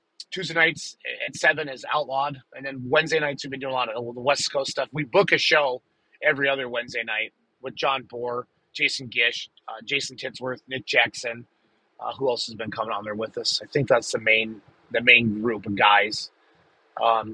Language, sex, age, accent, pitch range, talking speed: English, male, 30-49, American, 120-150 Hz, 205 wpm